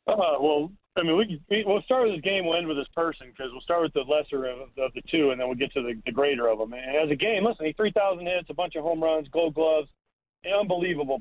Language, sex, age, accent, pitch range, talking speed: English, male, 40-59, American, 145-175 Hz, 290 wpm